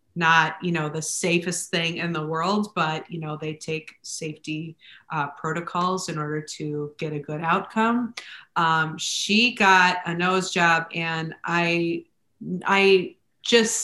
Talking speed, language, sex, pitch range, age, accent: 150 wpm, English, female, 165-190 Hz, 30-49, American